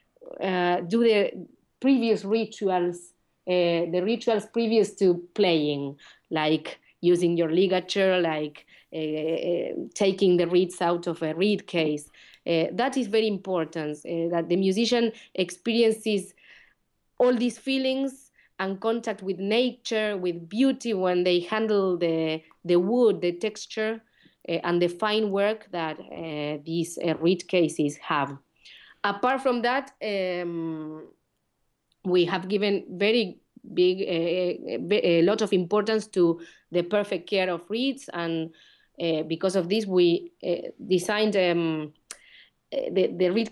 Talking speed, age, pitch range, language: 135 wpm, 30-49, 170-215 Hz, English